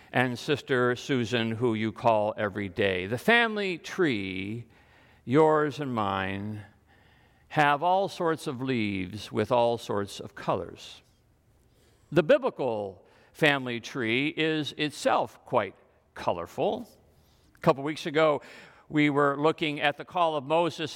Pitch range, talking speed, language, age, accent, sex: 135-205 Hz, 130 wpm, English, 50-69, American, male